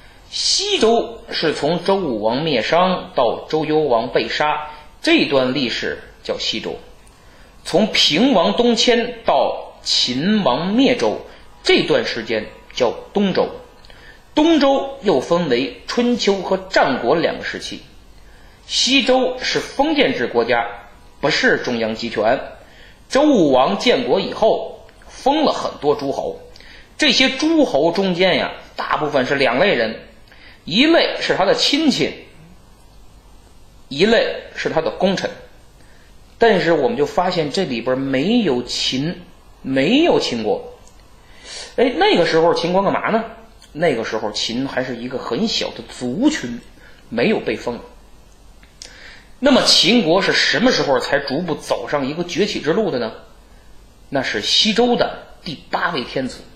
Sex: male